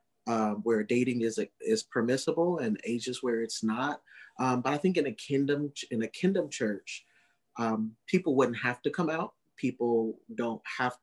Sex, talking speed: male, 175 wpm